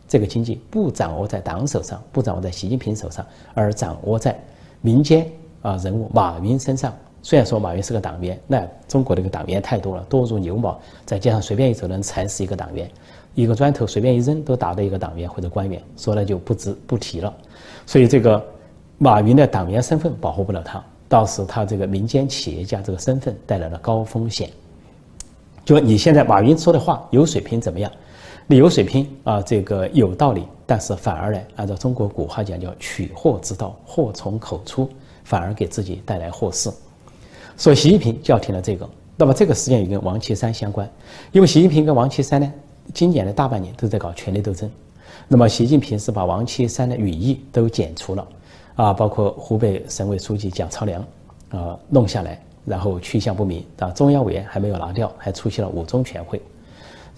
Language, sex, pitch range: Chinese, male, 95-125 Hz